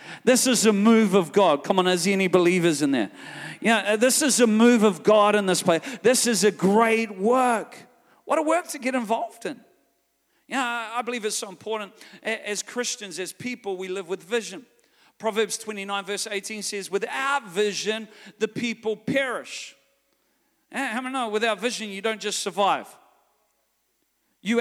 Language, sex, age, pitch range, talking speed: English, male, 40-59, 205-245 Hz, 180 wpm